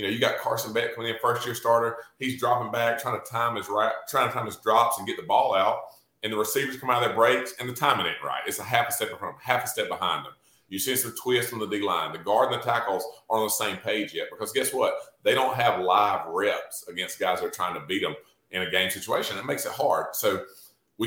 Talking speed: 280 wpm